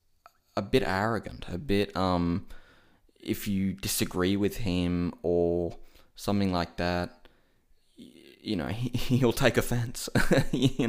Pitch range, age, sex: 85-105 Hz, 20-39, male